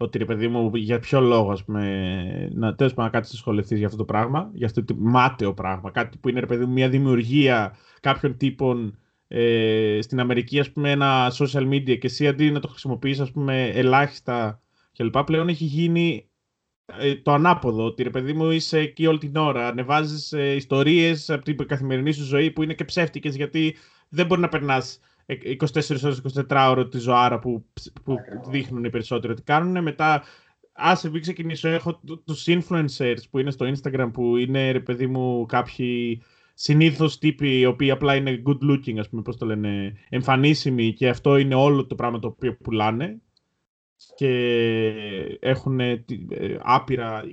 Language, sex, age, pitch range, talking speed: Greek, male, 20-39, 120-155 Hz, 170 wpm